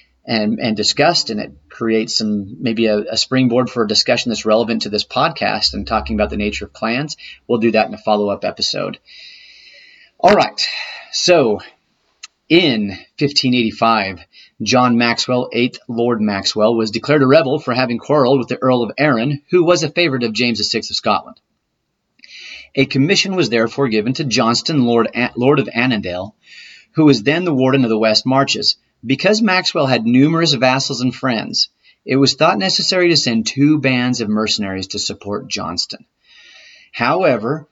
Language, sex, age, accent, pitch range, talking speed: English, male, 30-49, American, 110-140 Hz, 165 wpm